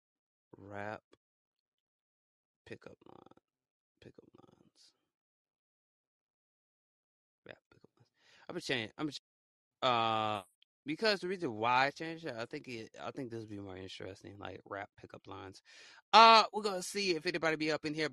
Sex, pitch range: male, 120-190 Hz